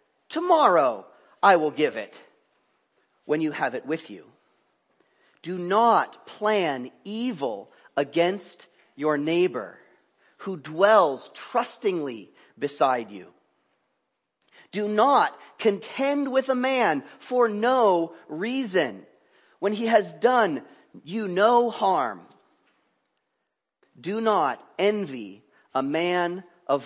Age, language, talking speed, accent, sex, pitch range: 40-59, English, 100 wpm, American, male, 165-245 Hz